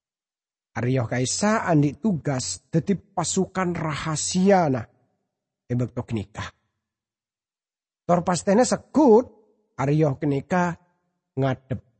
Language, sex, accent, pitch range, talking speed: English, male, Indonesian, 135-170 Hz, 65 wpm